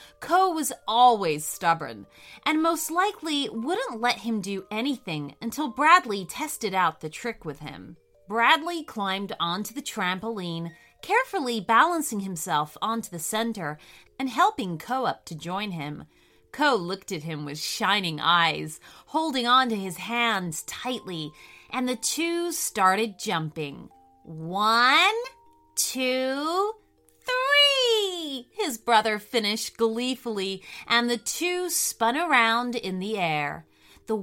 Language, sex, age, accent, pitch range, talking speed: English, female, 30-49, American, 190-305 Hz, 125 wpm